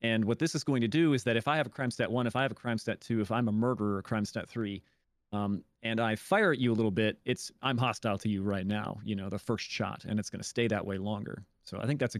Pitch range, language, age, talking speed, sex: 105-125 Hz, English, 30-49, 315 wpm, male